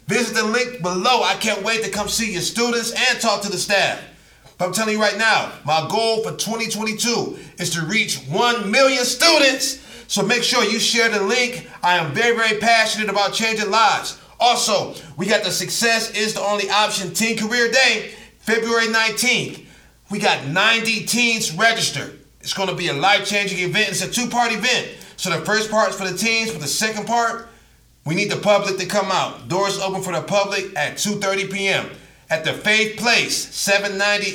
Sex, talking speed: male, 190 wpm